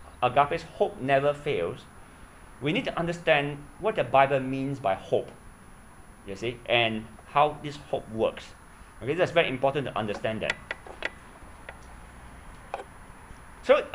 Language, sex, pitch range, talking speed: English, male, 120-155 Hz, 125 wpm